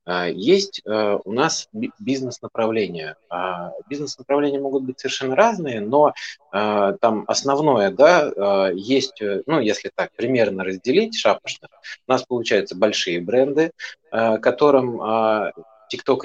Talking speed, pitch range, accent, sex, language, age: 100 wpm, 100-155 Hz, native, male, Russian, 30-49